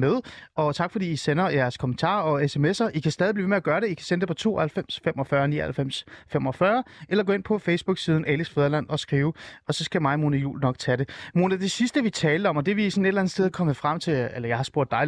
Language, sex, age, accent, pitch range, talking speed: Danish, male, 30-49, native, 145-195 Hz, 265 wpm